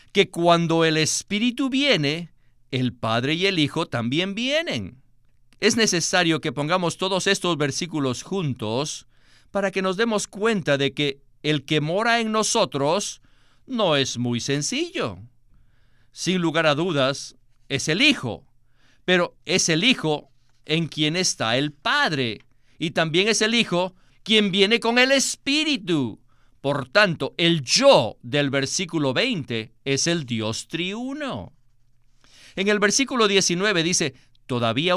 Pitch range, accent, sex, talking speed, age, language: 125-190 Hz, Mexican, male, 135 wpm, 50-69, Spanish